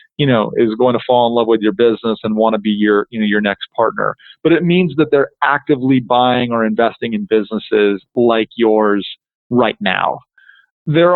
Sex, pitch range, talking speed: male, 120-145 Hz, 200 wpm